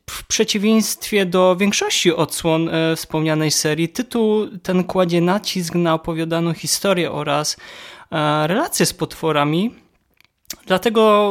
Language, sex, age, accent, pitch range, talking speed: Polish, male, 20-39, native, 150-185 Hz, 100 wpm